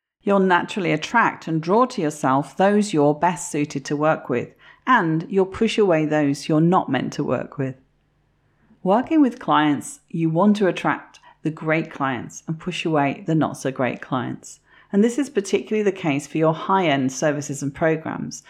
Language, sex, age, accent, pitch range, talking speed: English, female, 40-59, British, 150-195 Hz, 170 wpm